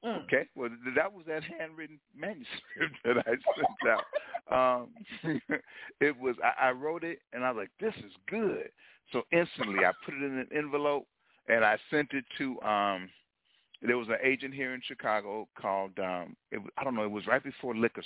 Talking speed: 180 wpm